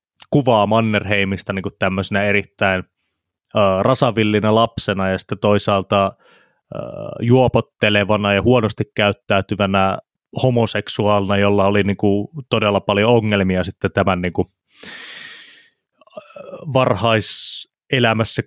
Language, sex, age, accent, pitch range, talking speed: Finnish, male, 20-39, native, 100-135 Hz, 90 wpm